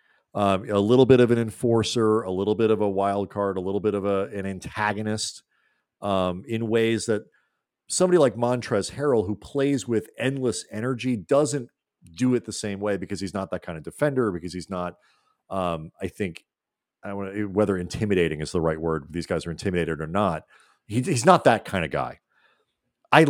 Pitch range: 90-115 Hz